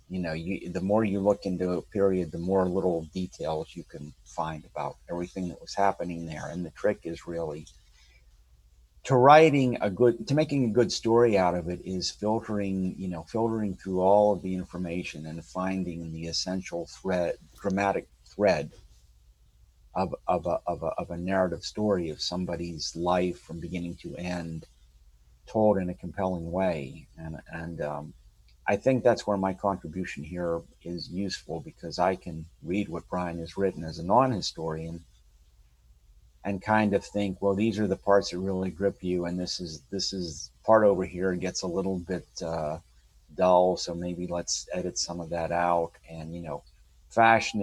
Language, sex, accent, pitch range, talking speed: English, male, American, 80-100 Hz, 175 wpm